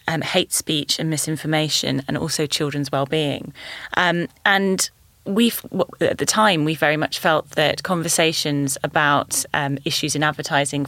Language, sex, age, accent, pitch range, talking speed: English, female, 20-39, British, 140-170 Hz, 145 wpm